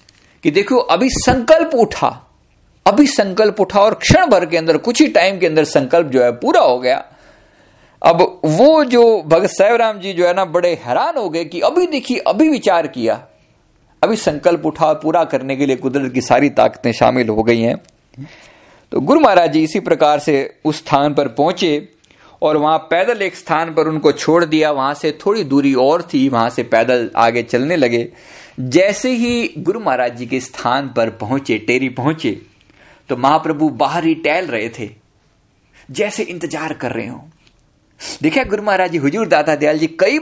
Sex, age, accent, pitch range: male, 50-69, native, 135-210 Hz